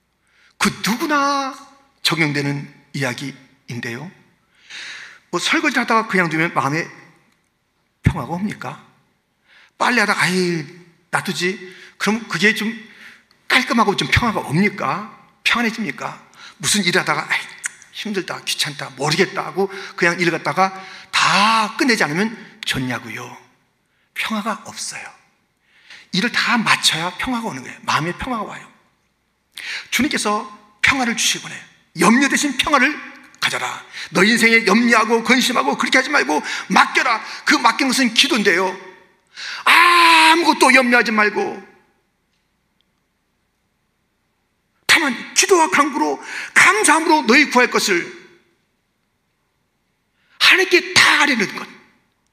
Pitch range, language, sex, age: 190-280 Hz, Korean, male, 40-59